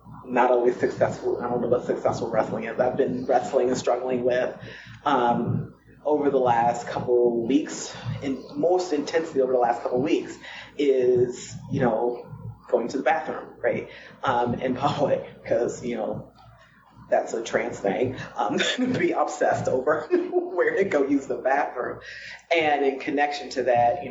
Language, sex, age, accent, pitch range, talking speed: English, female, 30-49, American, 125-140 Hz, 165 wpm